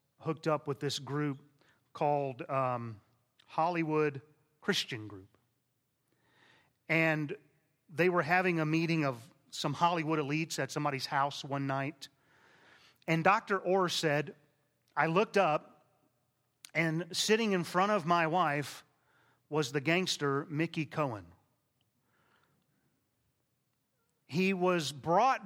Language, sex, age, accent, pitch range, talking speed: English, male, 30-49, American, 140-175 Hz, 110 wpm